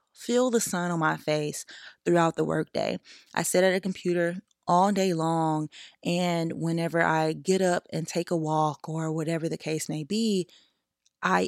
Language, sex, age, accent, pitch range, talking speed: English, female, 20-39, American, 155-180 Hz, 170 wpm